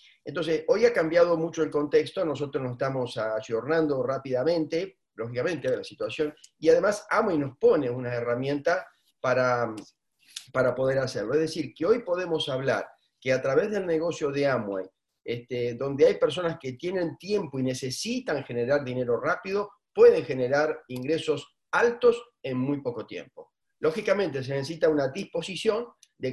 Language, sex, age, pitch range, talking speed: Spanish, male, 40-59, 130-180 Hz, 150 wpm